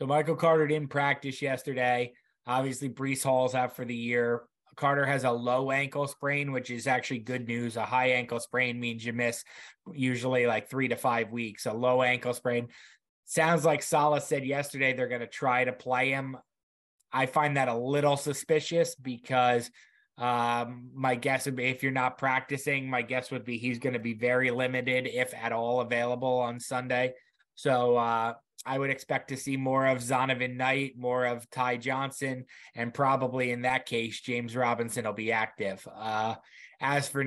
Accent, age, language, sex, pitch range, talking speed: American, 20-39, English, male, 120-135 Hz, 180 wpm